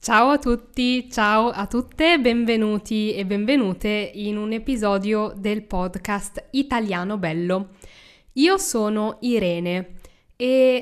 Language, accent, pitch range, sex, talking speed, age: Italian, native, 200-245 Hz, female, 110 wpm, 10-29